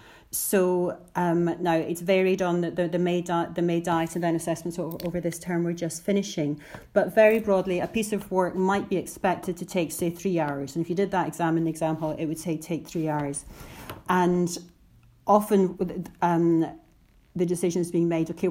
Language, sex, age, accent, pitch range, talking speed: English, female, 40-59, British, 170-190 Hz, 205 wpm